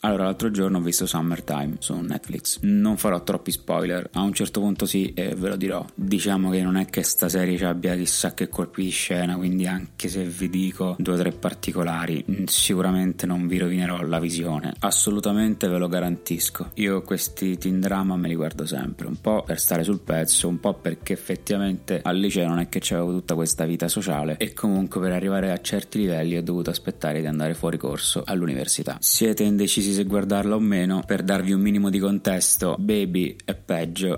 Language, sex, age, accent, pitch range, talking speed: Italian, male, 20-39, native, 90-100 Hz, 195 wpm